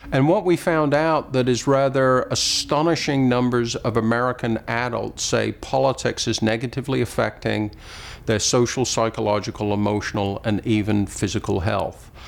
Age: 50-69